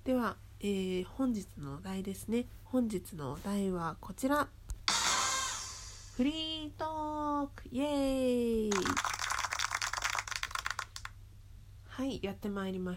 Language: Japanese